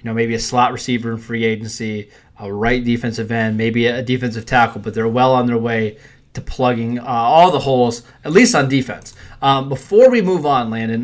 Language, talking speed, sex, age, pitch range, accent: English, 210 wpm, male, 20-39, 115-150 Hz, American